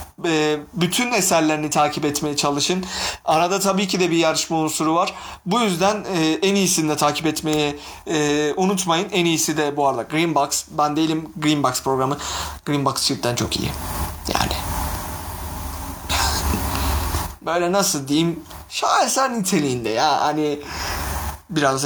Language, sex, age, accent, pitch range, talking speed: Turkish, male, 30-49, native, 130-165 Hz, 130 wpm